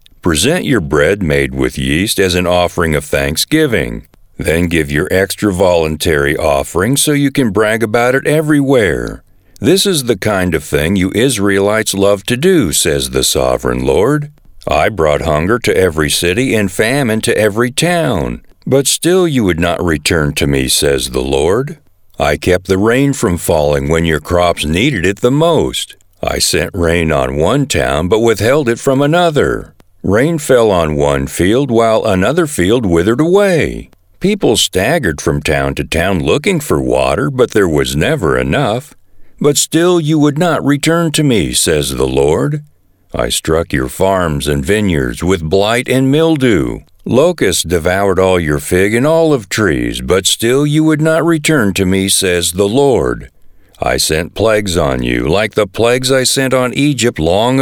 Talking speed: 170 wpm